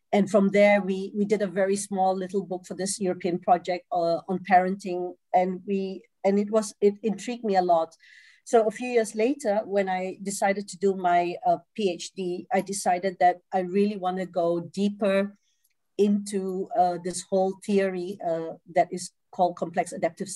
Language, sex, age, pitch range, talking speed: Swedish, female, 50-69, 180-200 Hz, 180 wpm